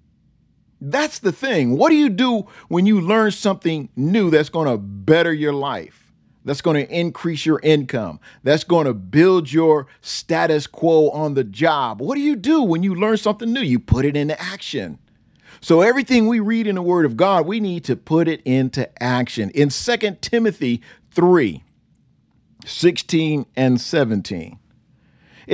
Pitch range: 125-195 Hz